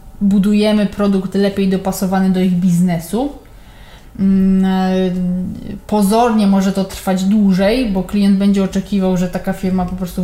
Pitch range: 180-205 Hz